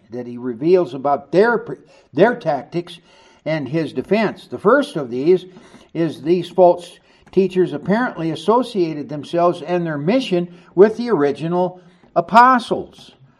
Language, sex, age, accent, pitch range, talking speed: English, male, 60-79, American, 150-205 Hz, 125 wpm